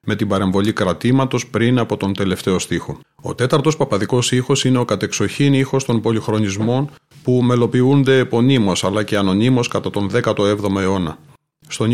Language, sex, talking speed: Greek, male, 150 wpm